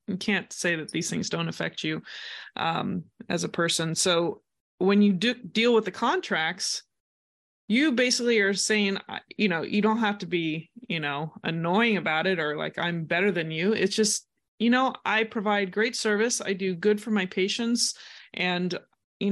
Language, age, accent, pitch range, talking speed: English, 20-39, American, 185-225 Hz, 185 wpm